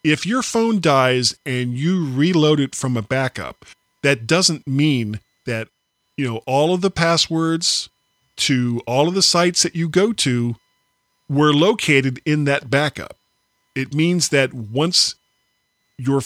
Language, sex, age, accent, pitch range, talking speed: English, male, 40-59, American, 115-150 Hz, 150 wpm